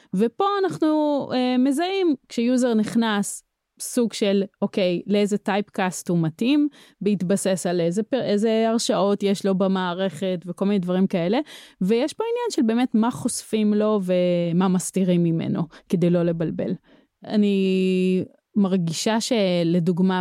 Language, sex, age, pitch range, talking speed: English, female, 20-39, 180-225 Hz, 105 wpm